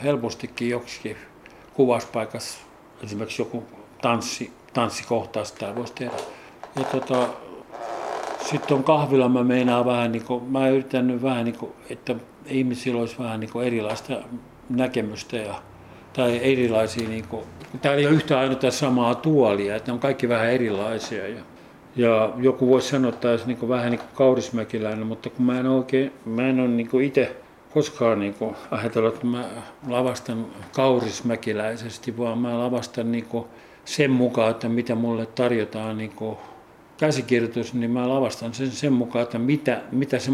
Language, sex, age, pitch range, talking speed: Finnish, male, 60-79, 110-125 Hz, 155 wpm